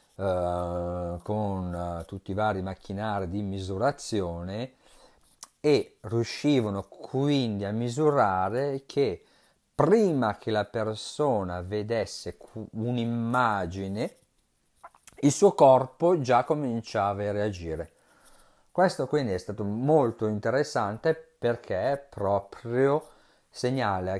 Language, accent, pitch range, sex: Italian, native, 95-125 Hz, male